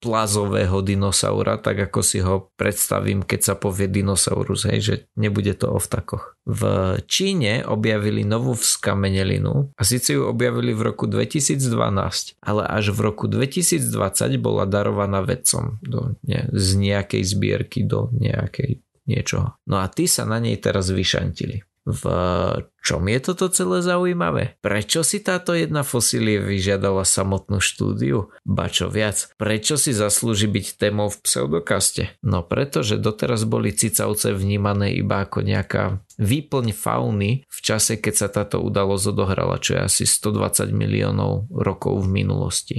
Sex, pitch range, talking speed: male, 100-125 Hz, 145 wpm